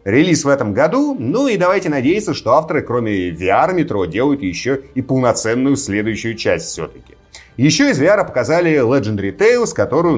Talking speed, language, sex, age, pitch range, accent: 160 wpm, Russian, male, 30-49, 115-170 Hz, native